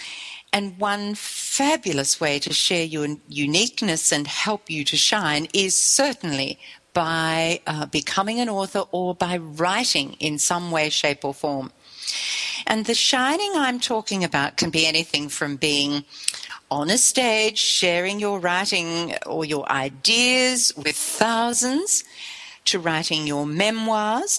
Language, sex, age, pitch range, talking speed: English, female, 50-69, 160-215 Hz, 135 wpm